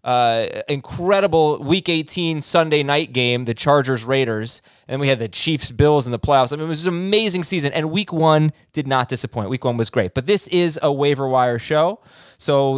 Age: 20-39